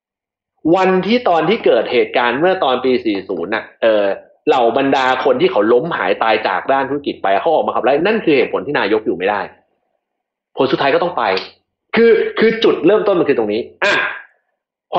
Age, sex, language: 30-49, male, Thai